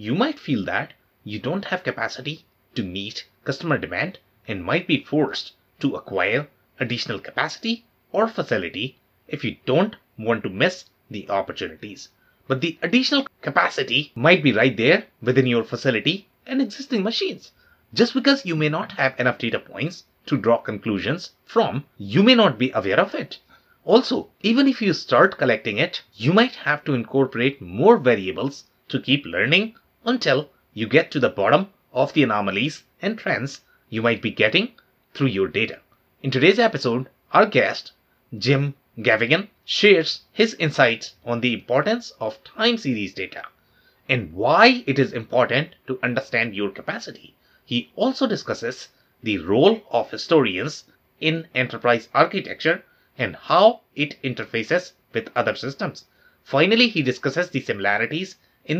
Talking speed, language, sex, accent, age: 150 wpm, English, male, Indian, 30-49